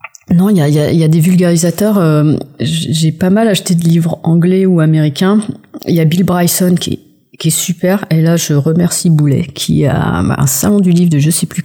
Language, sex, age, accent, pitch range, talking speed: French, female, 40-59, French, 150-180 Hz, 225 wpm